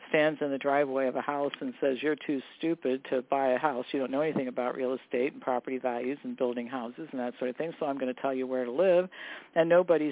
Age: 50-69